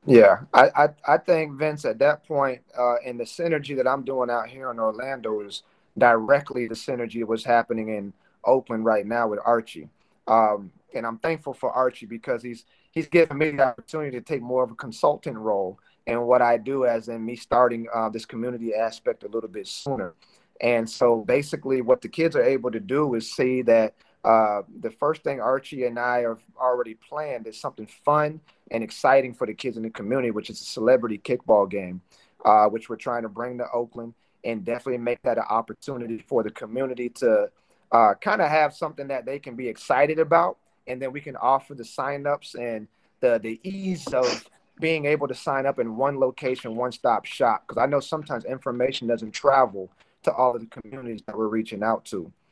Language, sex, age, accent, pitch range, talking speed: English, male, 30-49, American, 115-140 Hz, 205 wpm